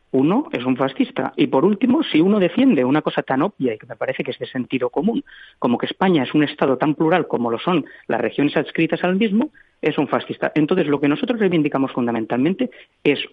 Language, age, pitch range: Spanish, 40-59, 130-185 Hz